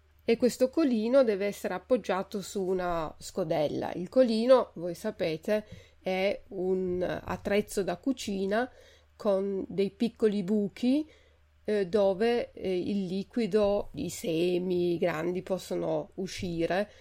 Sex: female